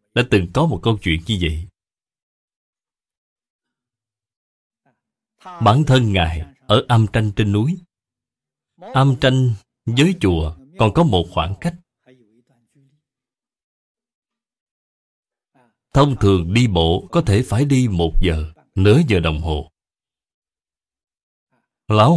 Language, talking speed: Vietnamese, 110 wpm